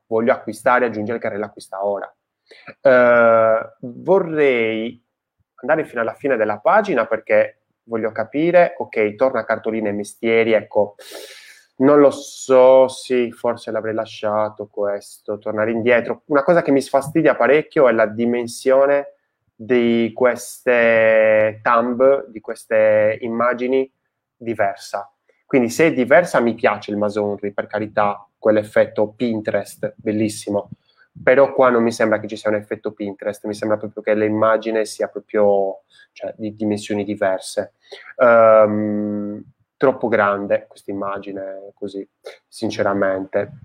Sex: male